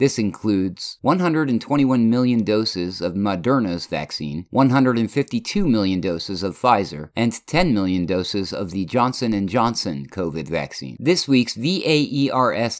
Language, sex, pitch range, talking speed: English, male, 100-130 Hz, 125 wpm